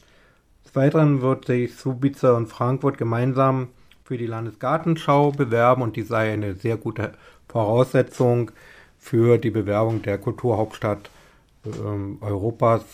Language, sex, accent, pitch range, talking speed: German, male, German, 105-130 Hz, 120 wpm